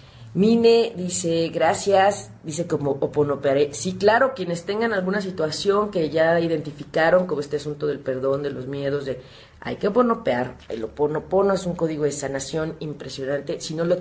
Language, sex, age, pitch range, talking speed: Spanish, female, 40-59, 135-170 Hz, 165 wpm